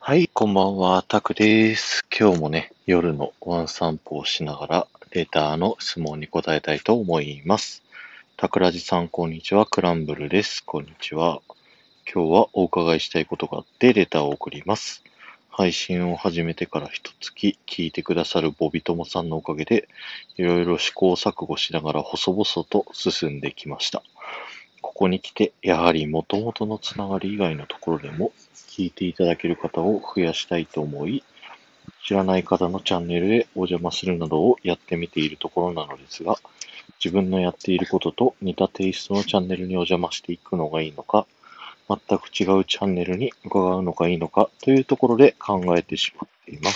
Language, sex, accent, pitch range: Japanese, male, native, 85-95 Hz